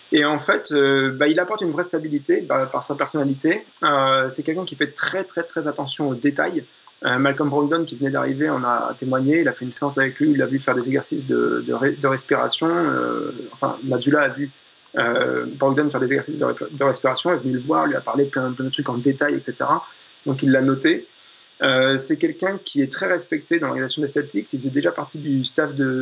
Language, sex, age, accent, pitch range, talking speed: French, male, 20-39, French, 135-160 Hz, 240 wpm